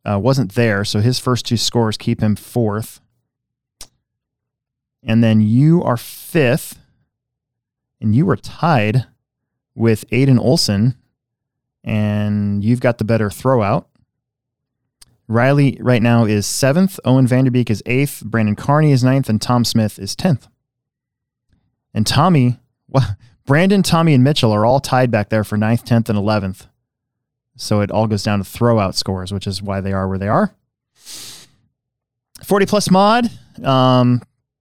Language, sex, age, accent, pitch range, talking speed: English, male, 20-39, American, 105-130 Hz, 145 wpm